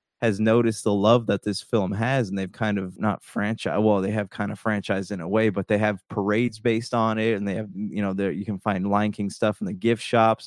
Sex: male